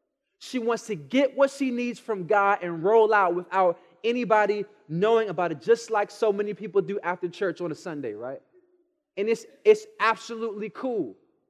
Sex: male